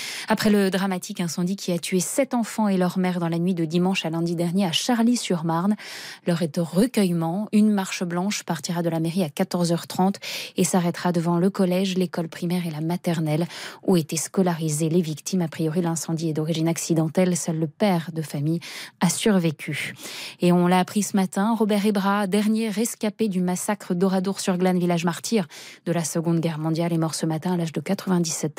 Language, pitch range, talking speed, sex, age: French, 170-215 Hz, 195 wpm, female, 20-39